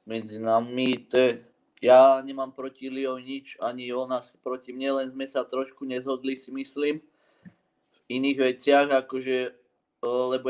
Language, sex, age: Czech, male, 20-39